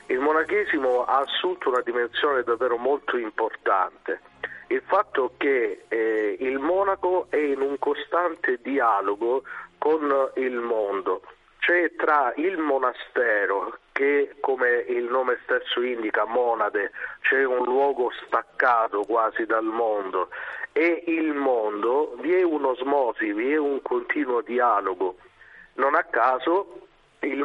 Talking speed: 130 wpm